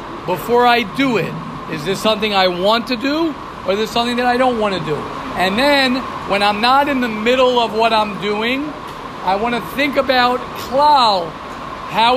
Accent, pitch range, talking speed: American, 215-260 Hz, 190 wpm